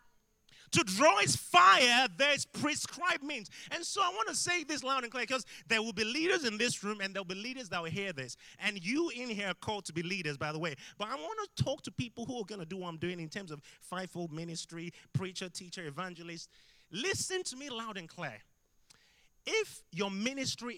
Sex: male